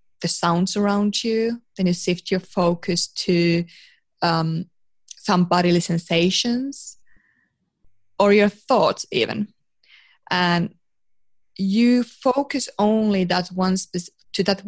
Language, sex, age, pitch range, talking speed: English, female, 20-39, 175-205 Hz, 110 wpm